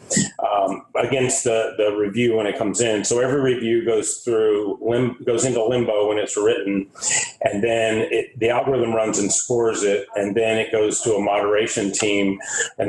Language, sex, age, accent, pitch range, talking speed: English, male, 40-59, American, 105-125 Hz, 180 wpm